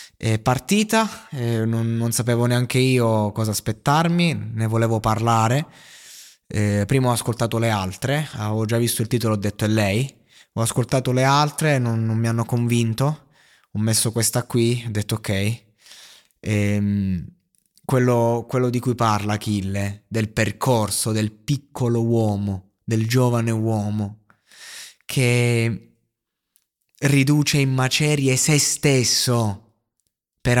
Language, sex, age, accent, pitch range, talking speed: Italian, male, 20-39, native, 115-165 Hz, 125 wpm